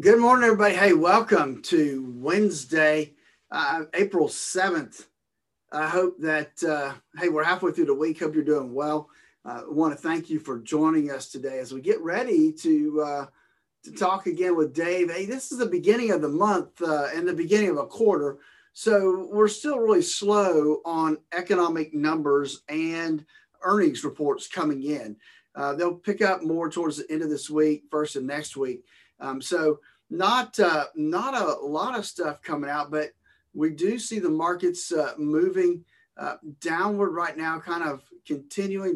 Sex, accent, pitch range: male, American, 150-210 Hz